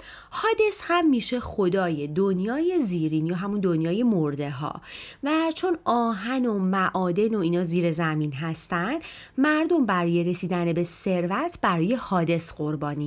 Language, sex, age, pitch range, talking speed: Persian, female, 30-49, 160-265 Hz, 135 wpm